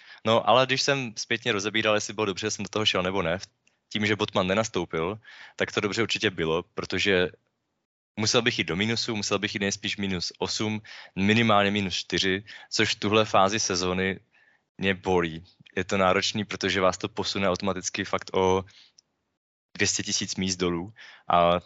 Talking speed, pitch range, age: 170 wpm, 95-110 Hz, 20-39